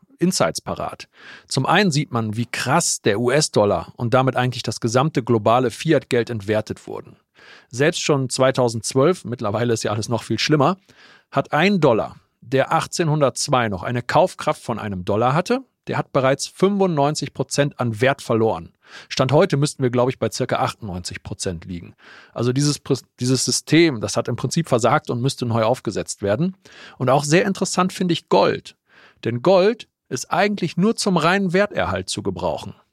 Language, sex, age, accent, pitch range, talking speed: German, male, 40-59, German, 120-155 Hz, 165 wpm